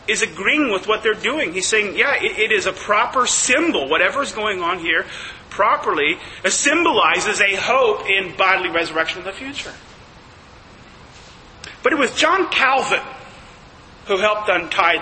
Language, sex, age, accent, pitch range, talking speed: English, male, 40-59, American, 195-285 Hz, 150 wpm